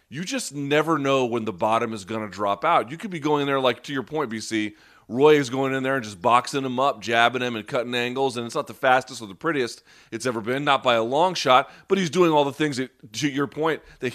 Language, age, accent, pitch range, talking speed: English, 30-49, American, 125-170 Hz, 270 wpm